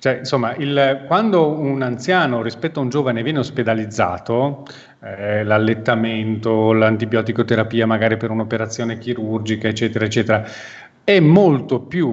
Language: Italian